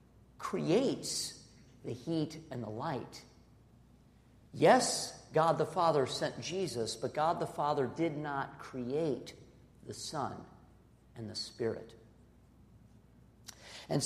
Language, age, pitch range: English, 50-69, 115-150 Hz